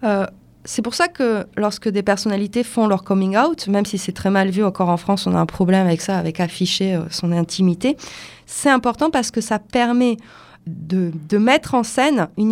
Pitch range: 200-245 Hz